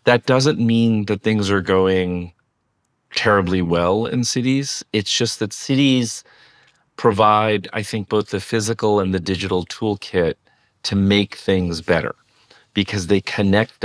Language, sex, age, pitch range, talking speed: English, male, 40-59, 85-110 Hz, 140 wpm